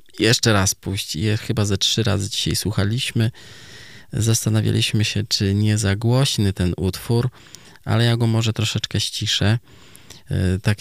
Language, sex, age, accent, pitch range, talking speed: Polish, male, 20-39, native, 95-115 Hz, 135 wpm